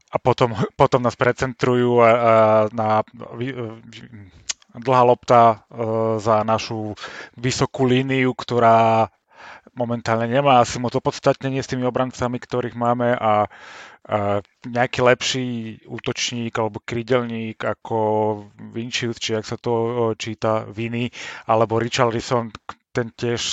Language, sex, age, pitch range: Slovak, male, 30-49, 115-130 Hz